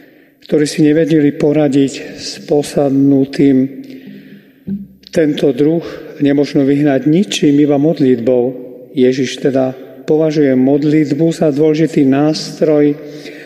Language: Slovak